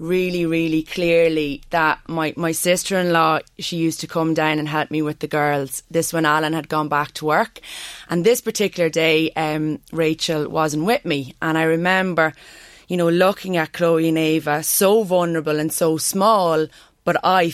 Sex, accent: female, Irish